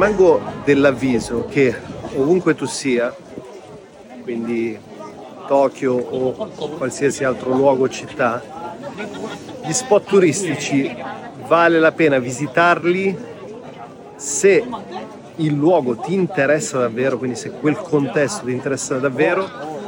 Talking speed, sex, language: 105 wpm, male, Italian